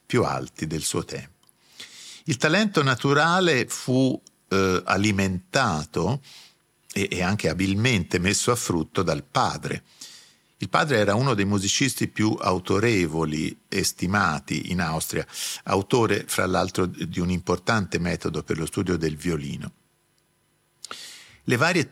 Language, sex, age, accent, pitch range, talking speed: Italian, male, 50-69, native, 85-120 Hz, 125 wpm